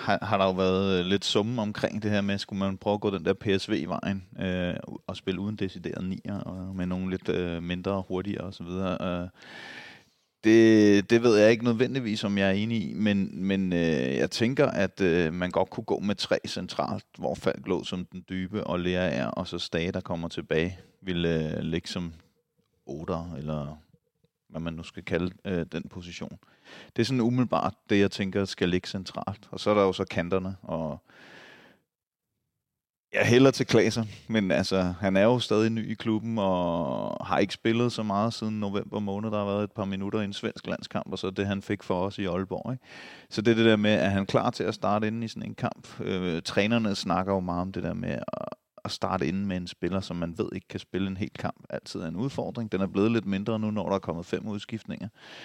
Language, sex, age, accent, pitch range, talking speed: Danish, male, 30-49, native, 90-105 Hz, 225 wpm